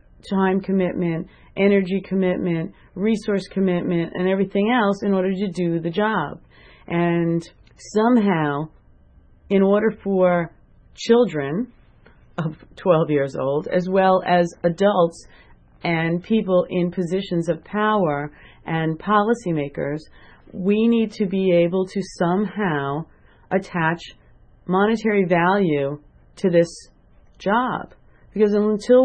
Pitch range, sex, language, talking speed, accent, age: 175-215 Hz, female, English, 110 wpm, American, 40-59